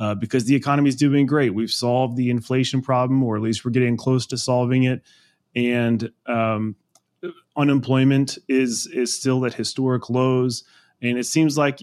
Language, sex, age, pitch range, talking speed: English, male, 20-39, 115-135 Hz, 170 wpm